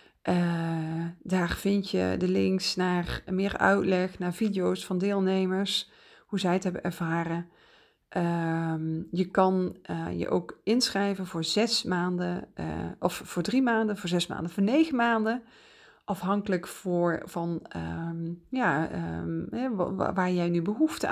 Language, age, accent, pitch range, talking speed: Dutch, 40-59, Dutch, 170-215 Hz, 130 wpm